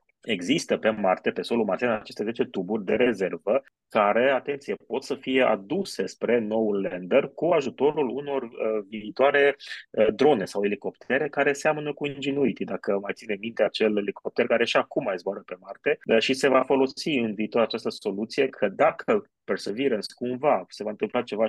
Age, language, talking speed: 30-49, Romanian, 175 wpm